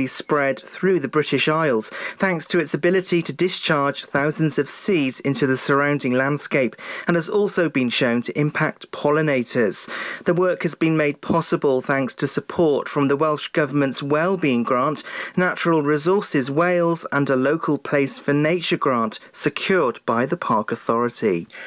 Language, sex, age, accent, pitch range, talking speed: English, male, 40-59, British, 135-170 Hz, 155 wpm